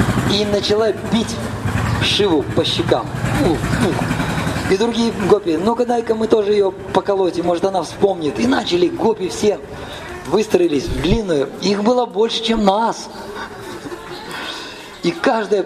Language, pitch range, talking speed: Russian, 155-220 Hz, 130 wpm